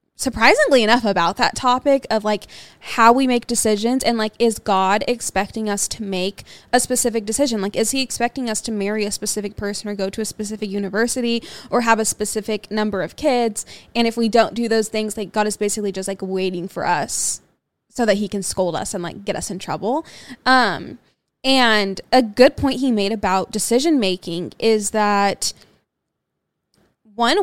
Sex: female